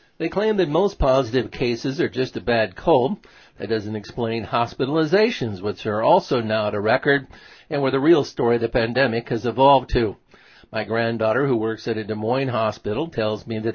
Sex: male